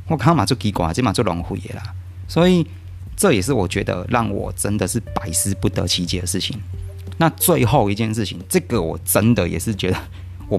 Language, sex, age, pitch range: Chinese, male, 30-49, 90-110 Hz